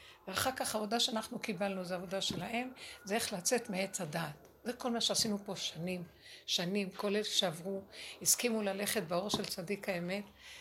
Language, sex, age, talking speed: Hebrew, female, 60-79, 165 wpm